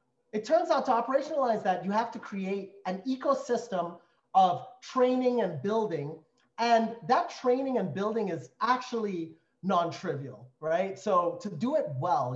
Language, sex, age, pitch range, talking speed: English, male, 30-49, 160-235 Hz, 145 wpm